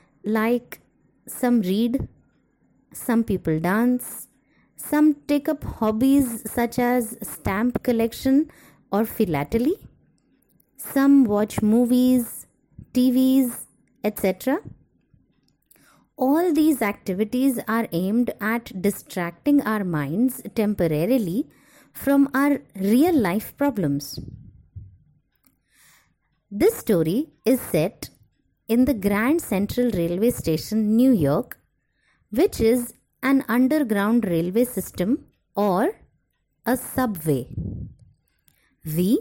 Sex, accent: female, Indian